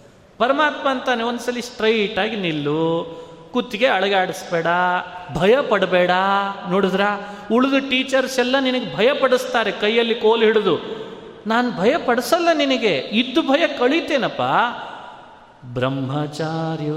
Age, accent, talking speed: 30-49, native, 100 wpm